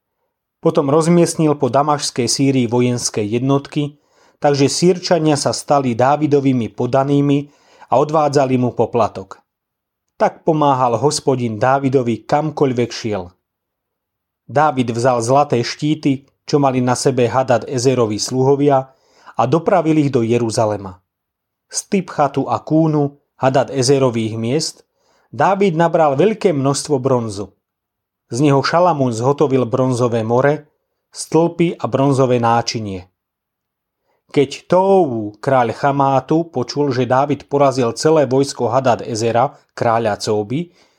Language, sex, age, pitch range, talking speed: Slovak, male, 30-49, 120-150 Hz, 110 wpm